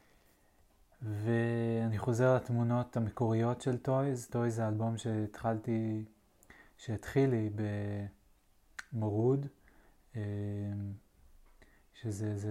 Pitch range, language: 105-120 Hz, Hebrew